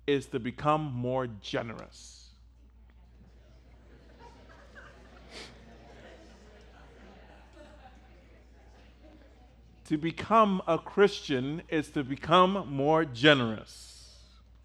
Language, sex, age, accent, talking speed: English, male, 40-59, American, 55 wpm